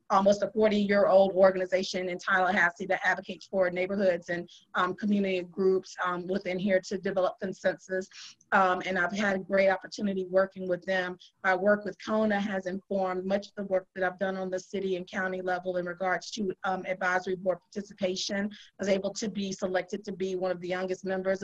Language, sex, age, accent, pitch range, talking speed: English, female, 30-49, American, 180-200 Hz, 195 wpm